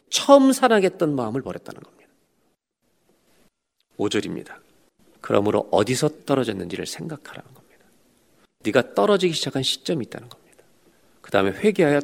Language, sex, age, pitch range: Korean, male, 40-59, 105-170 Hz